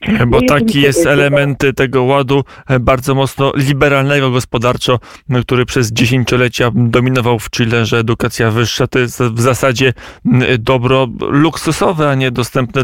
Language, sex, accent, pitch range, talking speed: Polish, male, native, 120-140 Hz, 130 wpm